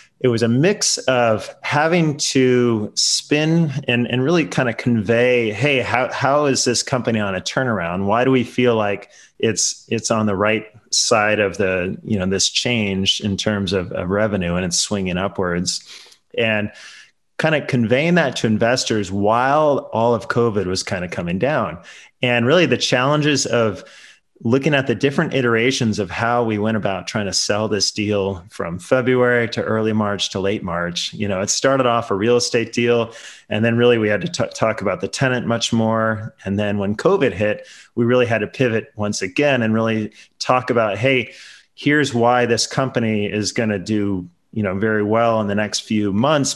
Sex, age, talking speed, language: male, 30-49, 190 wpm, English